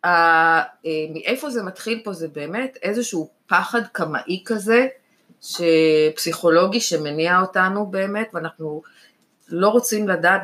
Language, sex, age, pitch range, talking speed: Hebrew, female, 20-39, 160-225 Hz, 110 wpm